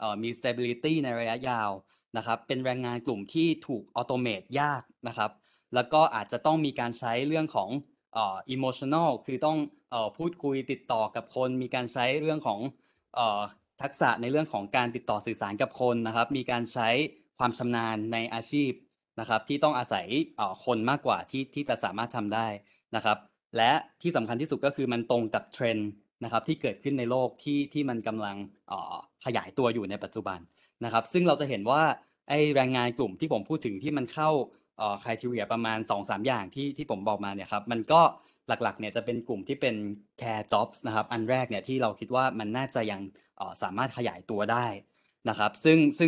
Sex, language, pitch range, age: male, Thai, 110-140 Hz, 10-29